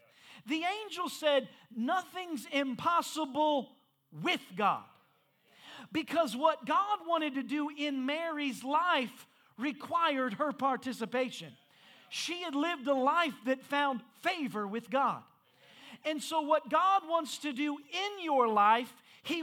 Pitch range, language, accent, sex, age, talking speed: 270-345 Hz, English, American, male, 40-59, 125 wpm